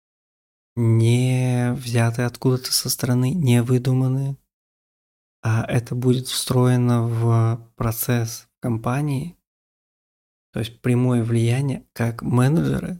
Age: 20-39